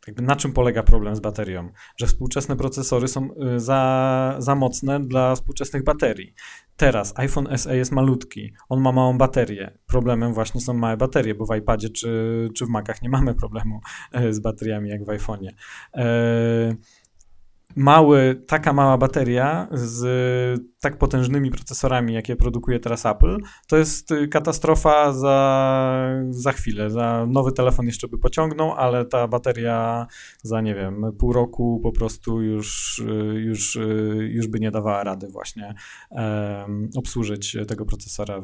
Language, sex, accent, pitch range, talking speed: Polish, male, native, 110-130 Hz, 145 wpm